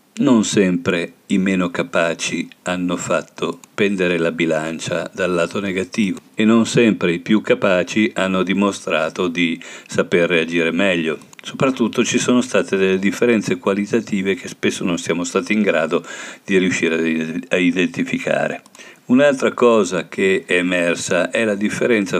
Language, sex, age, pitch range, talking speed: Italian, male, 50-69, 90-110 Hz, 140 wpm